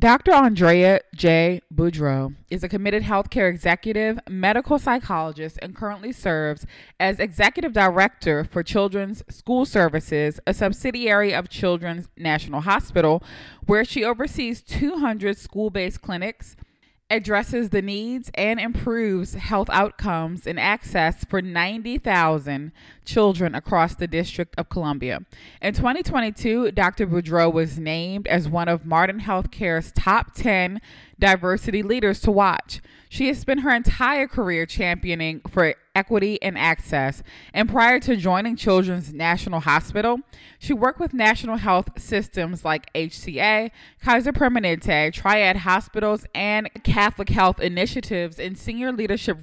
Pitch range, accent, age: 175-225 Hz, American, 20-39